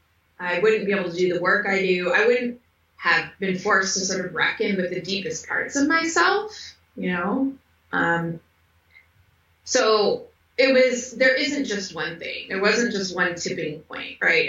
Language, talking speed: English, 180 wpm